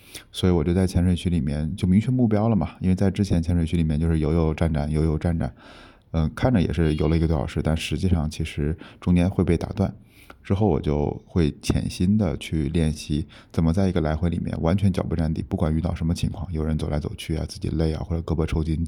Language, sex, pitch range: Chinese, male, 80-95 Hz